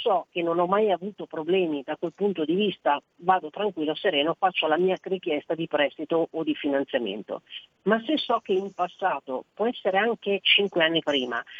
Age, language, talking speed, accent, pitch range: 40-59, Italian, 185 wpm, native, 155-195 Hz